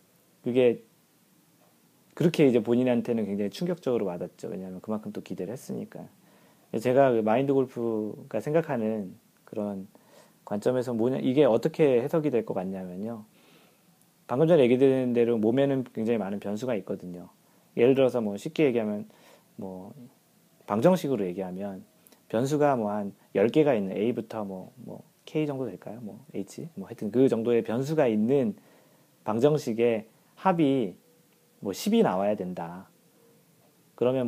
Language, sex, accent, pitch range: Korean, male, native, 110-150 Hz